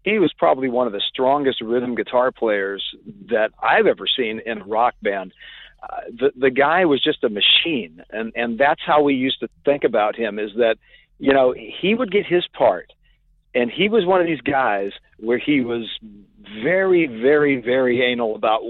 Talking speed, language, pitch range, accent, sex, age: 195 wpm, English, 120-160 Hz, American, male, 50-69